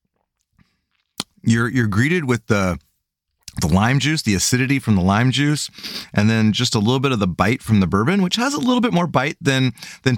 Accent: American